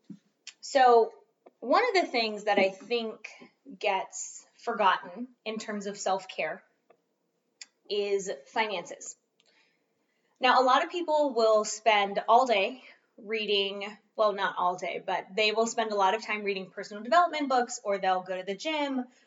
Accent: American